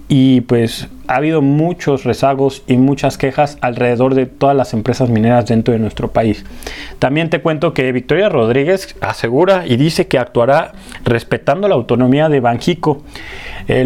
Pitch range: 120-145 Hz